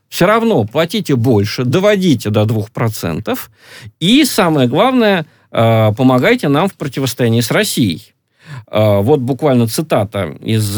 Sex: male